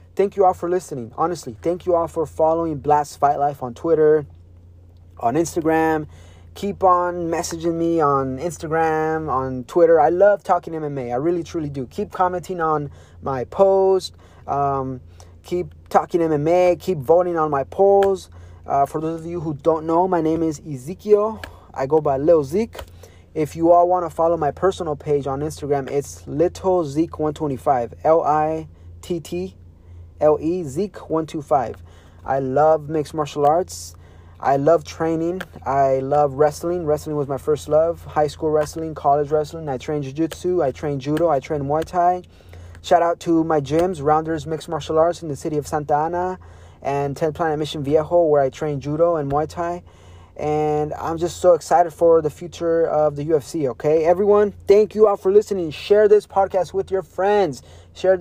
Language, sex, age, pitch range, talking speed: English, male, 30-49, 140-175 Hz, 175 wpm